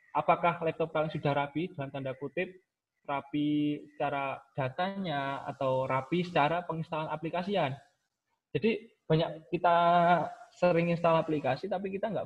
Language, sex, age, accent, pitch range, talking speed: Indonesian, male, 20-39, native, 130-160 Hz, 120 wpm